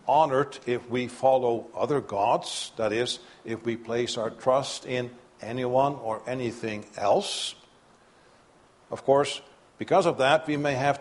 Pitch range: 135-185 Hz